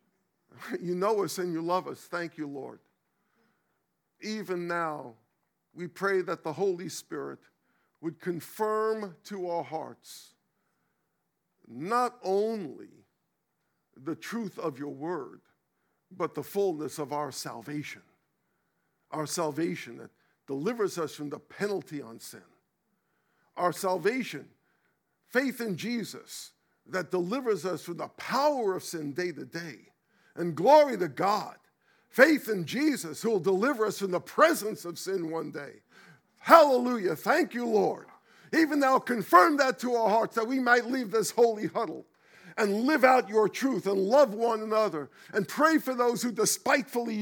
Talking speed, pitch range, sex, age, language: 145 wpm, 175-240 Hz, male, 50-69, English